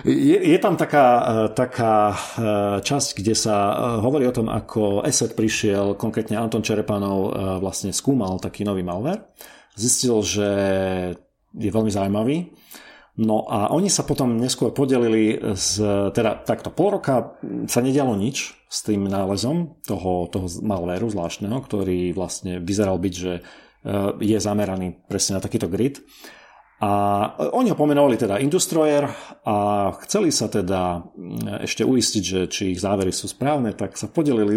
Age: 40-59